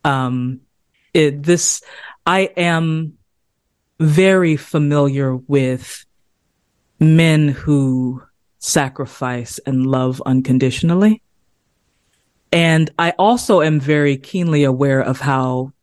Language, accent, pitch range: English, American, 130-160 Hz